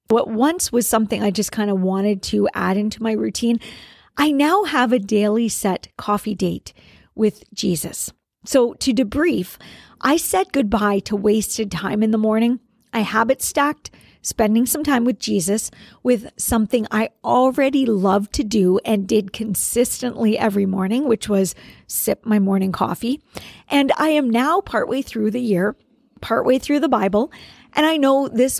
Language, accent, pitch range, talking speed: English, American, 205-255 Hz, 165 wpm